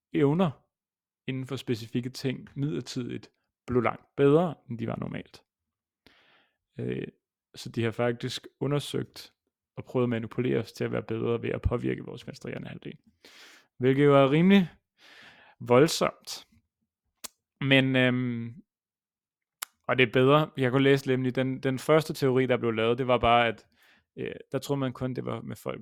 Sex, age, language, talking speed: male, 30-49, Danish, 160 wpm